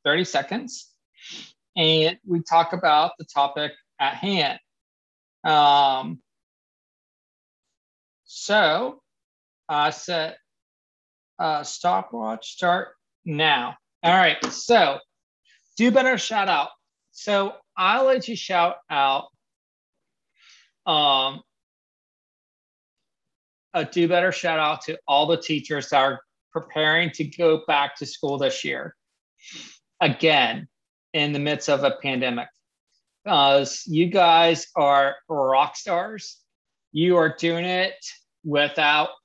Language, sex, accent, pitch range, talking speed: English, male, American, 140-170 Hz, 105 wpm